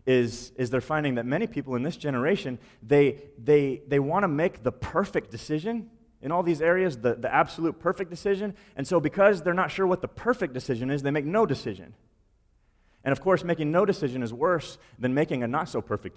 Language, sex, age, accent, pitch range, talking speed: English, male, 30-49, American, 105-140 Hz, 205 wpm